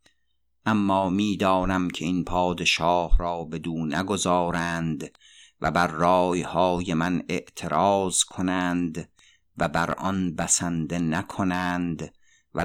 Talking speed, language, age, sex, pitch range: 95 wpm, Persian, 50-69, male, 85-95 Hz